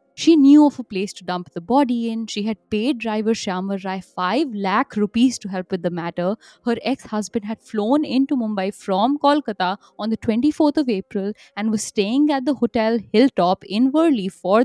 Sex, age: female, 10-29